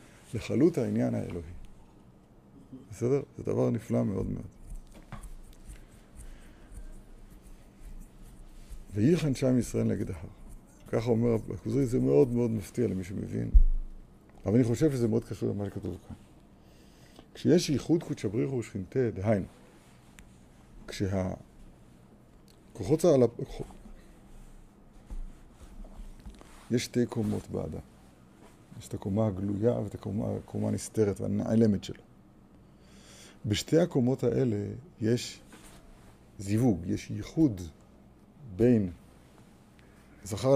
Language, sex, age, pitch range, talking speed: Hebrew, male, 50-69, 95-120 Hz, 85 wpm